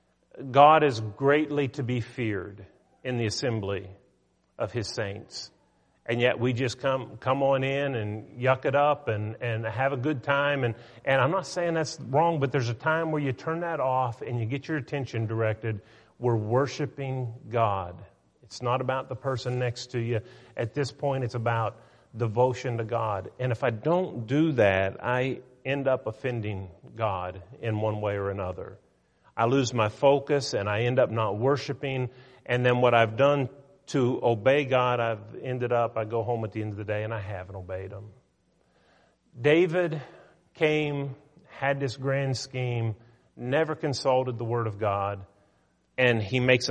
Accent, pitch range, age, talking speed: American, 115-140 Hz, 40-59, 175 wpm